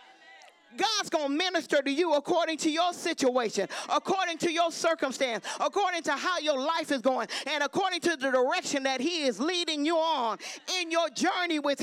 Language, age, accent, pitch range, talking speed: English, 40-59, American, 195-310 Hz, 185 wpm